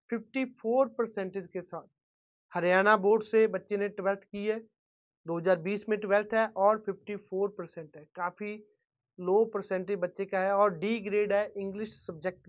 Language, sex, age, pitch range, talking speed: Punjabi, male, 30-49, 180-215 Hz, 145 wpm